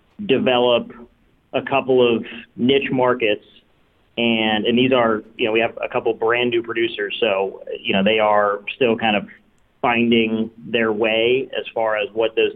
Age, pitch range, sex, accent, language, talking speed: 40-59, 115-135 Hz, male, American, English, 165 wpm